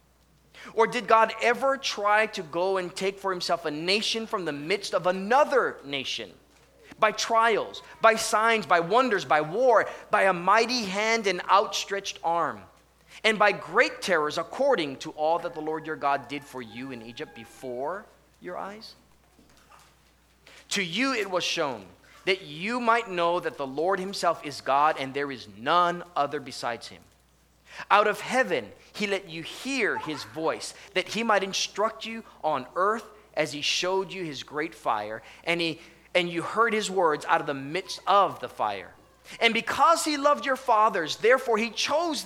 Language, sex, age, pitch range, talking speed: English, male, 30-49, 155-220 Hz, 175 wpm